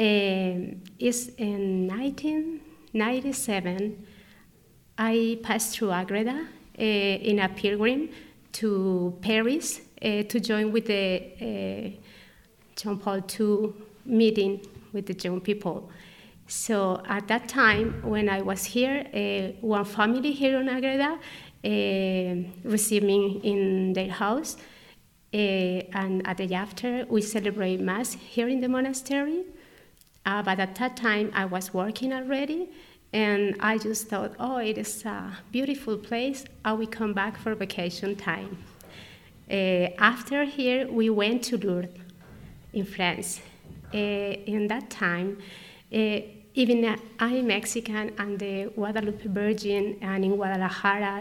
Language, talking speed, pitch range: English, 130 wpm, 195-230 Hz